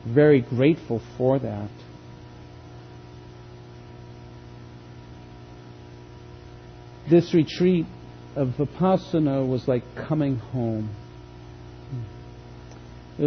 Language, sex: English, male